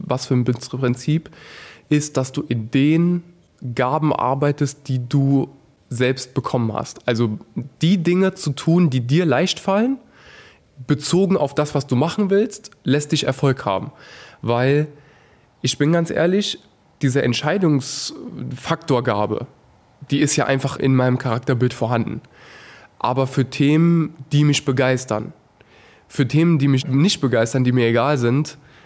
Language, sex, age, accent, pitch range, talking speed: German, male, 20-39, German, 120-150 Hz, 140 wpm